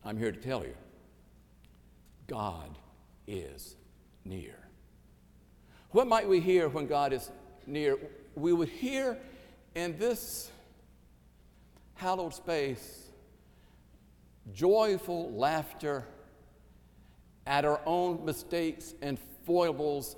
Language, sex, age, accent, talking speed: English, male, 60-79, American, 90 wpm